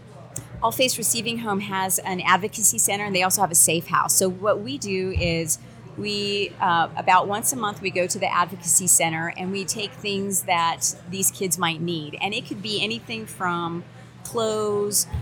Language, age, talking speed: English, 30-49, 185 wpm